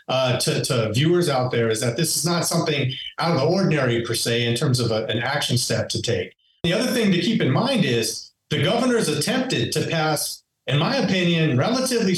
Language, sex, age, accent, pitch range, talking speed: English, male, 50-69, American, 145-190 Hz, 210 wpm